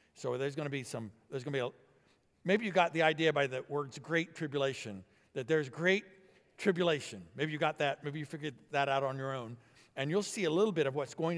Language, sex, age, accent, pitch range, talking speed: English, male, 50-69, American, 120-160 Hz, 245 wpm